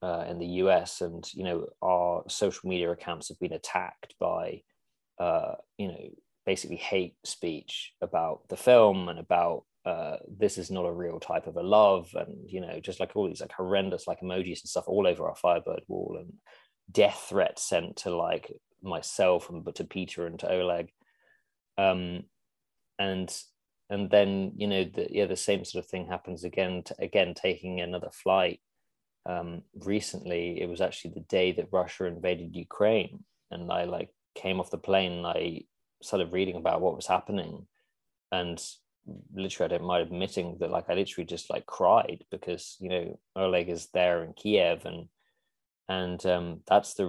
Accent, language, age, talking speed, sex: British, English, 20-39, 180 wpm, male